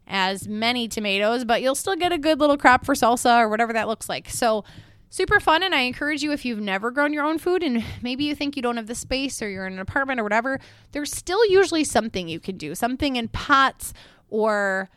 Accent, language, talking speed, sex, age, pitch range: American, English, 235 wpm, female, 20-39, 210-285 Hz